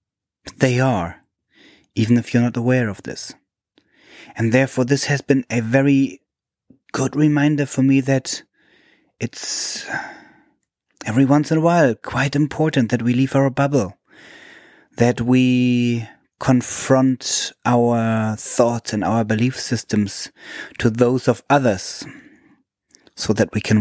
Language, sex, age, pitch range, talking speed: English, male, 30-49, 110-130 Hz, 130 wpm